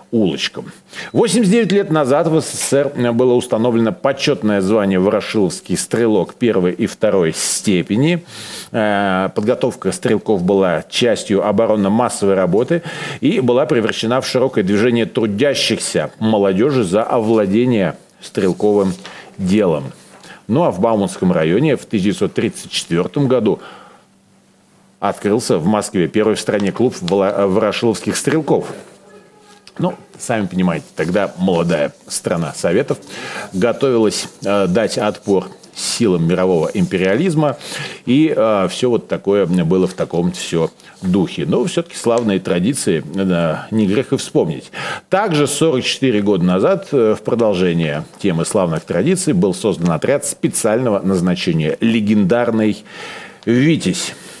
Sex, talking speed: male, 110 wpm